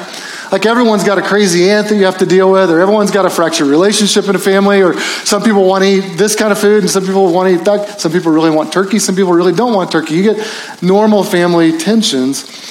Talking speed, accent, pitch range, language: 255 wpm, American, 165-200 Hz, English